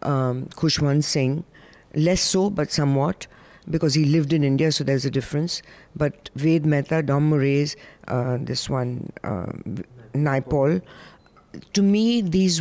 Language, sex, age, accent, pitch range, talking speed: English, female, 60-79, Indian, 150-185 Hz, 140 wpm